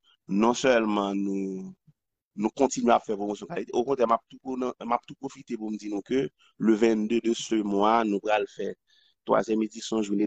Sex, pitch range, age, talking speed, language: male, 105-135 Hz, 30-49, 195 wpm, French